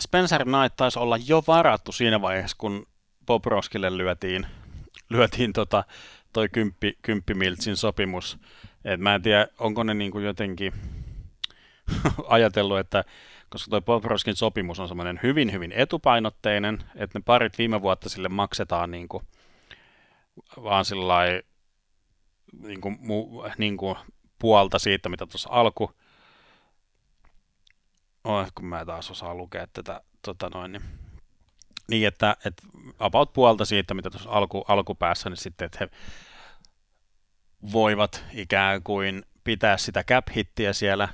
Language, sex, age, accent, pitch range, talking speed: Finnish, male, 30-49, native, 95-110 Hz, 125 wpm